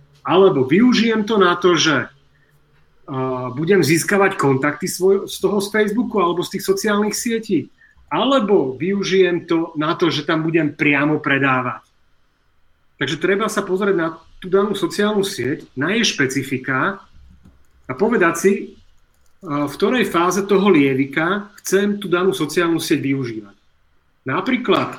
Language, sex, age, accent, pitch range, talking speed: Czech, male, 40-59, native, 130-190 Hz, 135 wpm